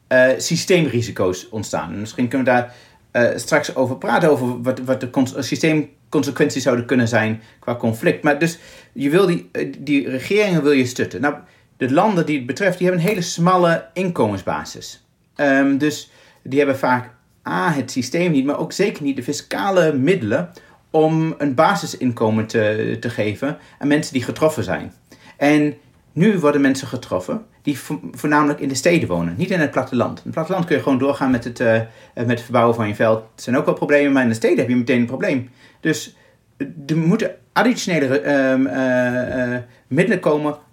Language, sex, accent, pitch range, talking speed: Dutch, male, Dutch, 125-155 Hz, 185 wpm